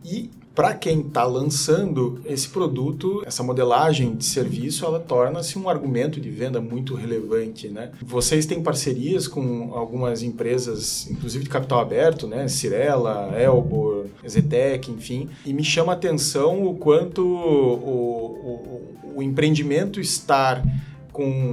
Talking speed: 135 wpm